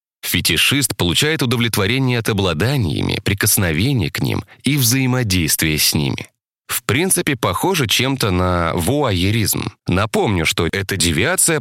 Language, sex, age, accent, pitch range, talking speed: Russian, male, 30-49, native, 90-135 Hz, 115 wpm